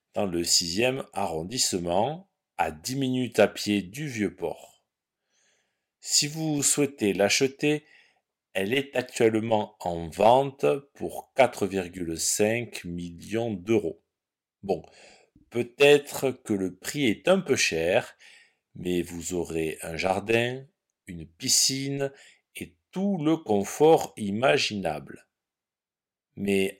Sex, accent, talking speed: male, French, 105 wpm